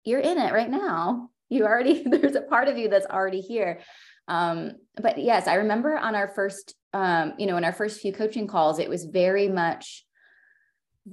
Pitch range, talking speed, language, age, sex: 160-205 Hz, 200 wpm, English, 20-39, female